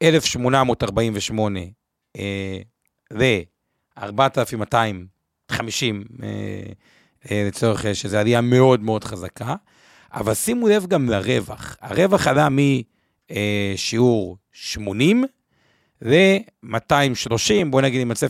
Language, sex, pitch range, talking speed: Hebrew, male, 110-155 Hz, 80 wpm